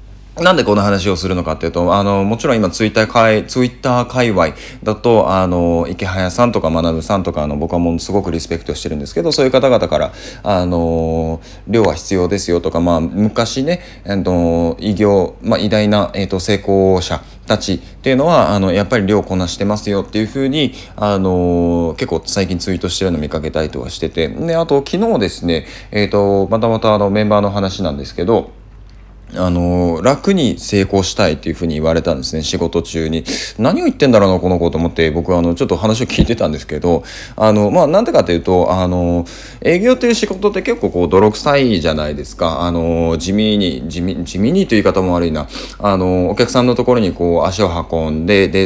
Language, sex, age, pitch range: Japanese, male, 20-39, 85-105 Hz